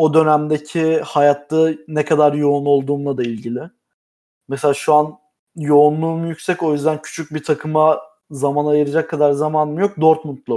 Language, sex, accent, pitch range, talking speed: Turkish, male, native, 145-185 Hz, 140 wpm